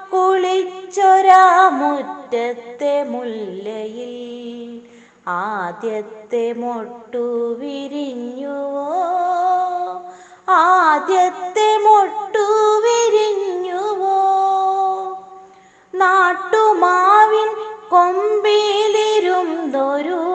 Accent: native